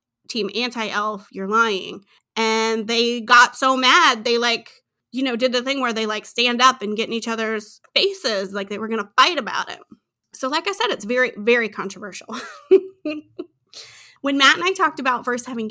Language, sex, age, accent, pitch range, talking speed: English, female, 30-49, American, 205-260 Hz, 195 wpm